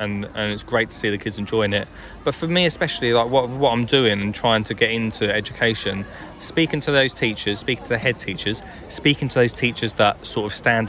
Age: 20-39